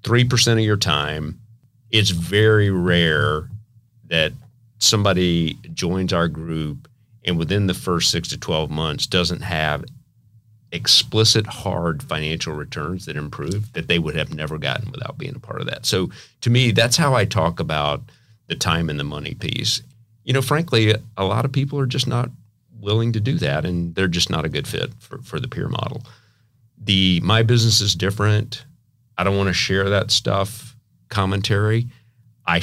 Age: 40-59